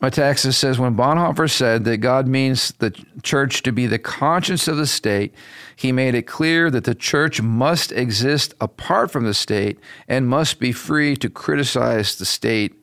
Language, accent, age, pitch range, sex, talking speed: English, American, 50-69, 120-150 Hz, male, 180 wpm